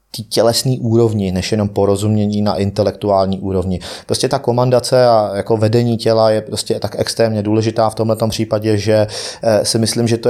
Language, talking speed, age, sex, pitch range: Czech, 165 wpm, 30-49, male, 105-115 Hz